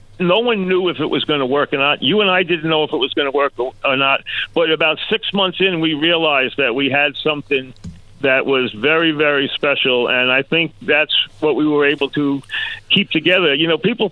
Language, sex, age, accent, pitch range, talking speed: English, male, 50-69, American, 140-175 Hz, 230 wpm